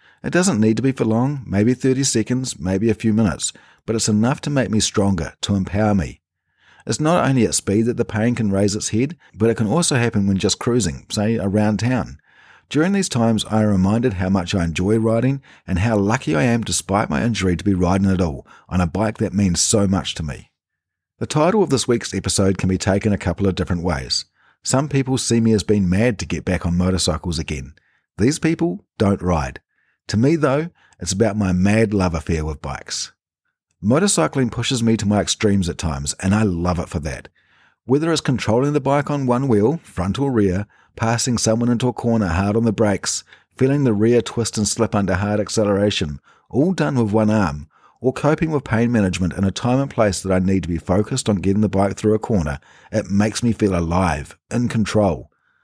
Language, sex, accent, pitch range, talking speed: English, male, Australian, 95-120 Hz, 215 wpm